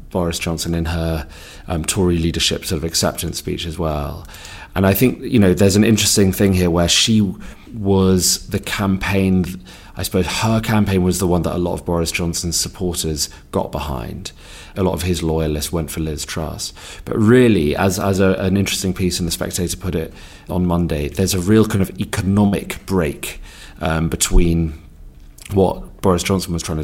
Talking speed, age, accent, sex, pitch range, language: 185 wpm, 30-49, British, male, 80-95 Hz, English